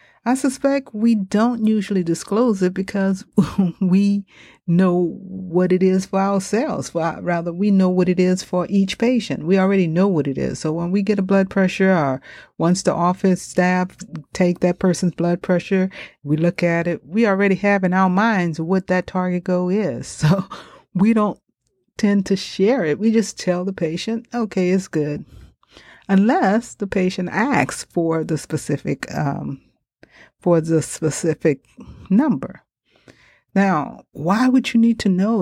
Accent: American